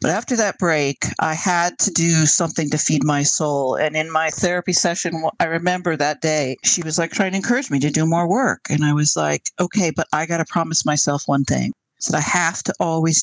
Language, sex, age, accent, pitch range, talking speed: English, male, 50-69, American, 155-195 Hz, 230 wpm